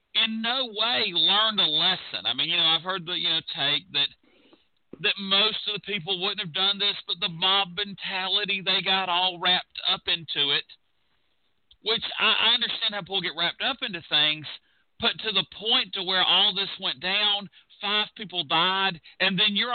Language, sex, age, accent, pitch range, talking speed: English, male, 40-59, American, 165-200 Hz, 190 wpm